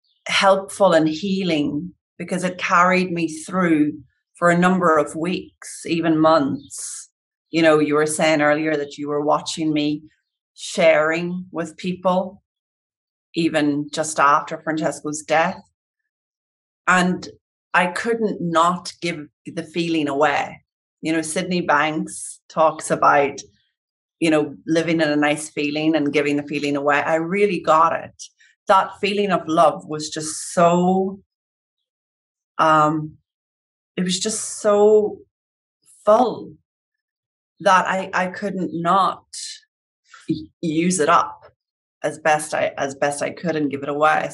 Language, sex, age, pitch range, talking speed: English, female, 30-49, 155-185 Hz, 130 wpm